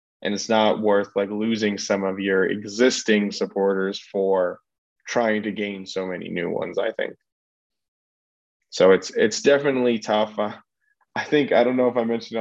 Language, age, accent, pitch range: English, 20-39, American, 105-135 Hz